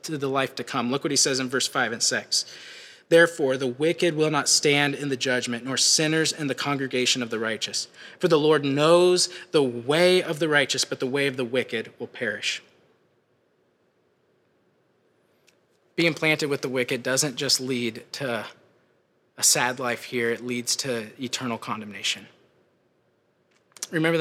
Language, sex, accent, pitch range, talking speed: English, male, American, 130-165 Hz, 165 wpm